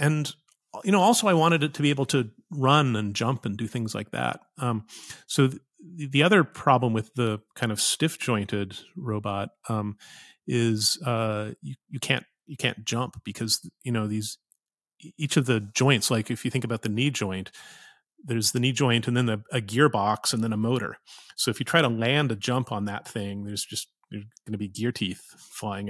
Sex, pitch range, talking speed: male, 105-135 Hz, 205 wpm